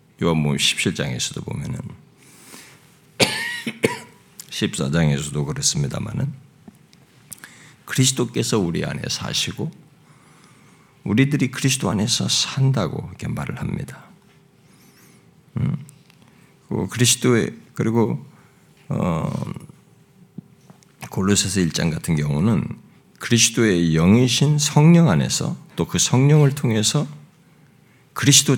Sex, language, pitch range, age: male, Korean, 110-150 Hz, 50-69